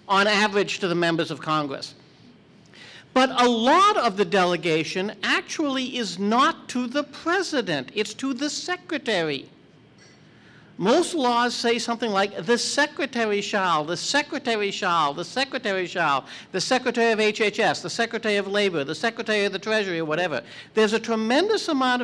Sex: male